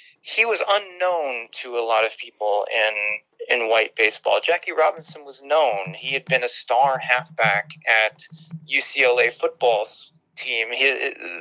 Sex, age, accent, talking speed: male, 30-49, American, 140 wpm